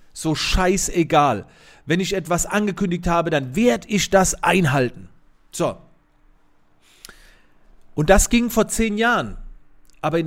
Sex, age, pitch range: male, 40-59, 155-190 Hz